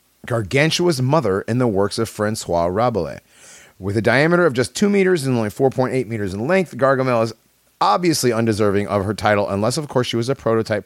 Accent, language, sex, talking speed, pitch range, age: American, English, male, 195 wpm, 95-130 Hz, 30-49